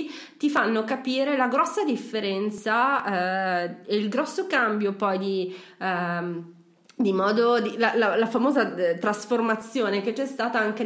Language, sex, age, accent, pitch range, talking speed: Italian, female, 30-49, native, 185-235 Hz, 145 wpm